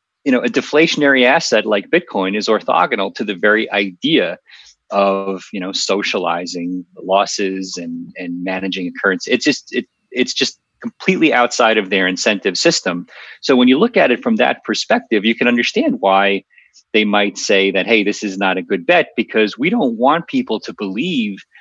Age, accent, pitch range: 30-49, American, 95-135 Hz